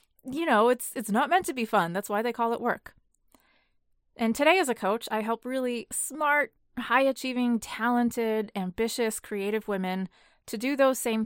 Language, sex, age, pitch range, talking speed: English, female, 20-39, 195-250 Hz, 180 wpm